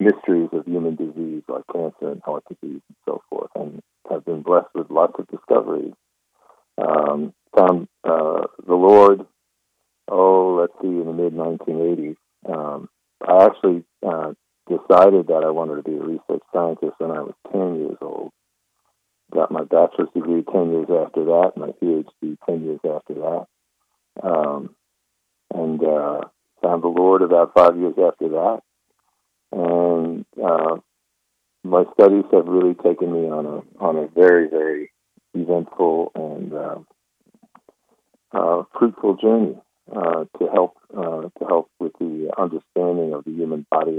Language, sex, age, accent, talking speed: English, male, 50-69, American, 145 wpm